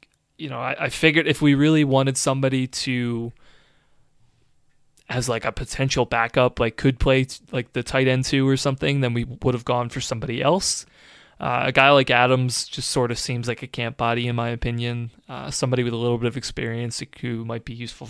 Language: English